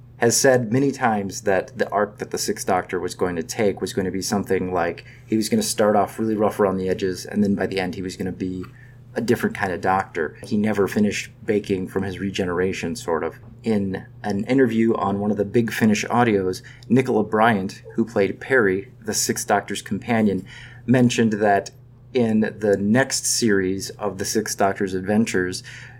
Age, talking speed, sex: 30-49, 200 wpm, male